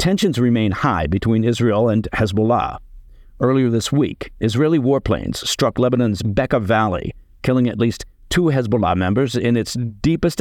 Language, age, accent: English, 50-69, American